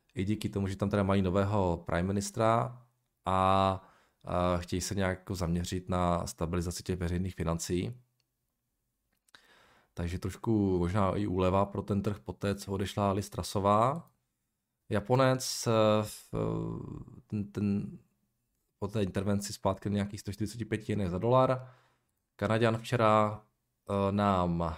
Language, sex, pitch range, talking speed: Czech, male, 90-110 Hz, 120 wpm